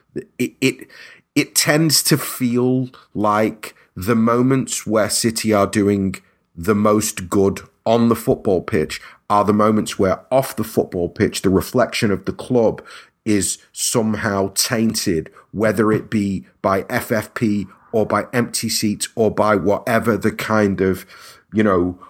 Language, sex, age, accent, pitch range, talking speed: English, male, 30-49, British, 105-130 Hz, 145 wpm